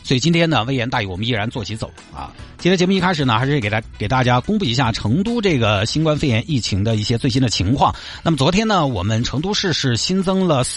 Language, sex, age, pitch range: Chinese, male, 50-69, 95-145 Hz